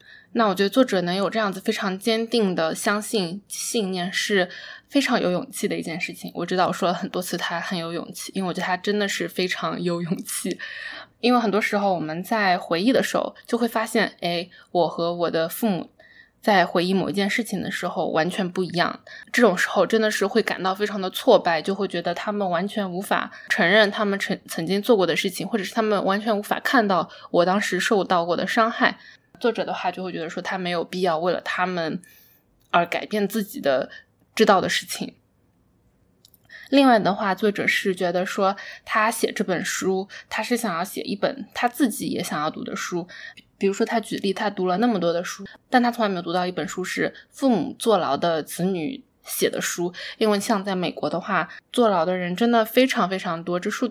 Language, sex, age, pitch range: Chinese, female, 10-29, 180-225 Hz